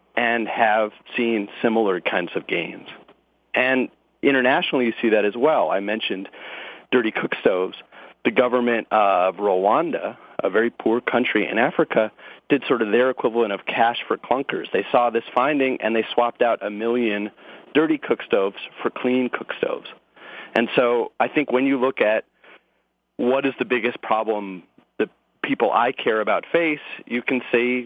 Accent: American